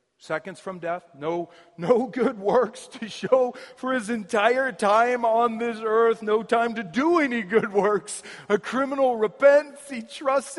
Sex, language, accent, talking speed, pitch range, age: male, English, American, 160 wpm, 160-230 Hz, 40-59